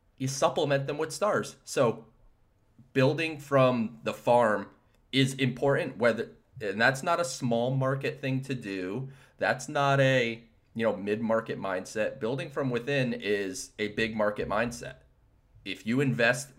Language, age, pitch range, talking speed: English, 30-49, 110-135 Hz, 145 wpm